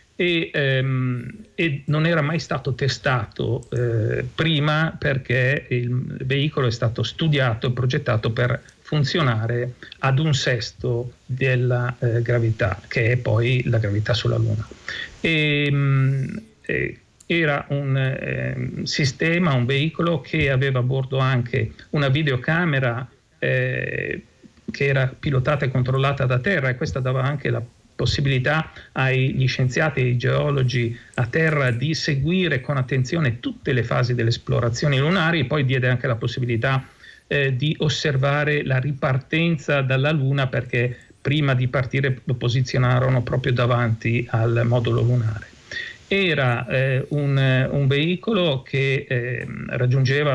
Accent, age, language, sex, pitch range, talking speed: native, 40-59, Italian, male, 125-145 Hz, 130 wpm